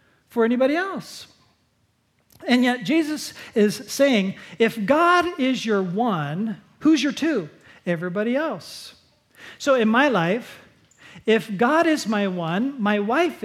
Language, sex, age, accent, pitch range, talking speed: English, male, 40-59, American, 195-300 Hz, 130 wpm